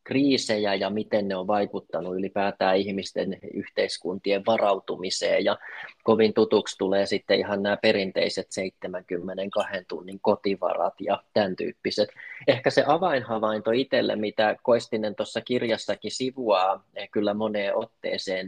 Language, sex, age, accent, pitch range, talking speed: Finnish, male, 30-49, native, 100-120 Hz, 115 wpm